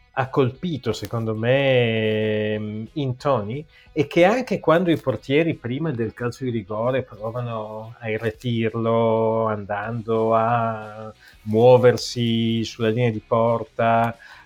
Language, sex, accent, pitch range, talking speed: Italian, male, native, 110-140 Hz, 110 wpm